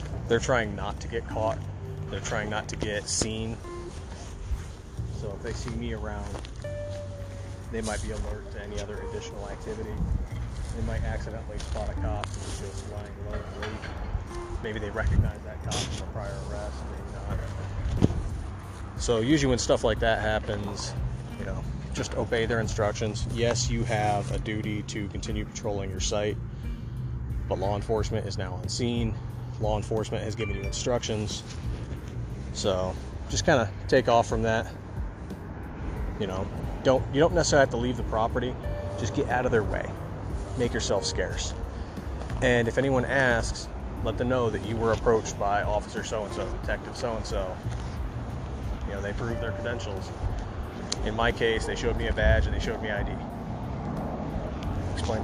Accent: American